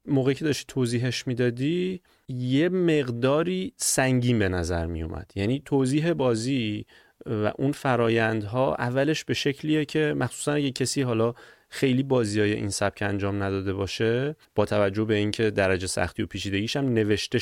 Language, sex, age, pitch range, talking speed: Persian, male, 30-49, 105-140 Hz, 150 wpm